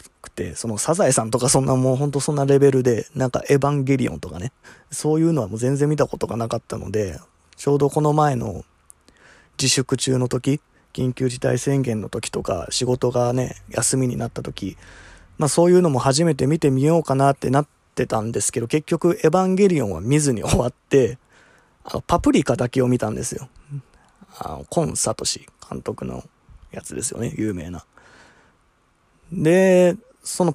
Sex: male